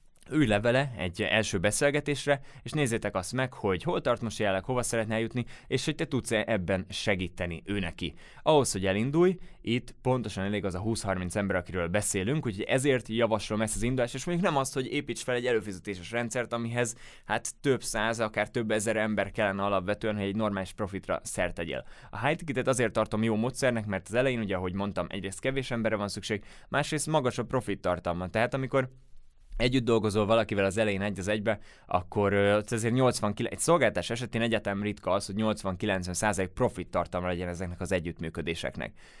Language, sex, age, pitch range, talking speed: Hungarian, male, 20-39, 100-130 Hz, 180 wpm